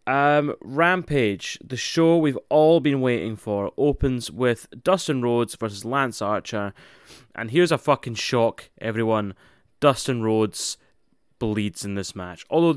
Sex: male